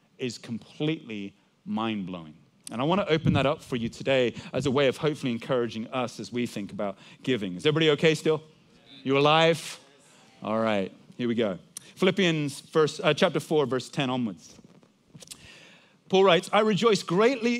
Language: English